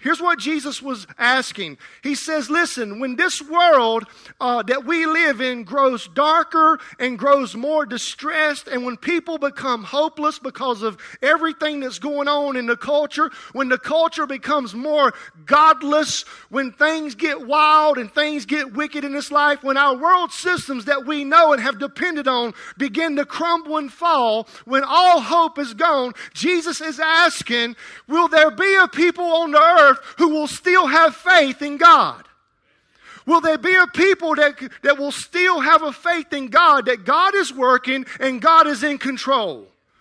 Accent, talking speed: American, 170 wpm